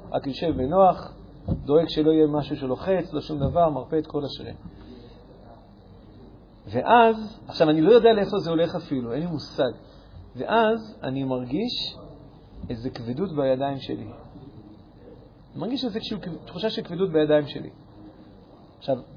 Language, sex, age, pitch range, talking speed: Hebrew, male, 40-59, 130-175 Hz, 130 wpm